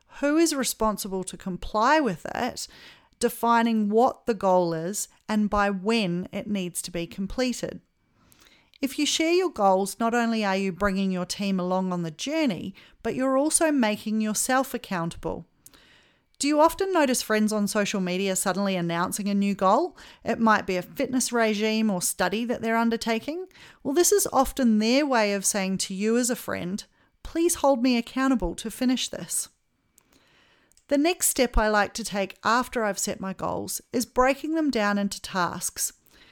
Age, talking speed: 40-59, 170 wpm